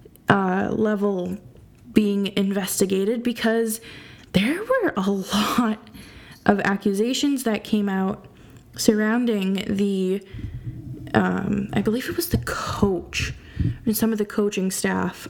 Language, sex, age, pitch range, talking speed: English, female, 20-39, 185-235 Hz, 115 wpm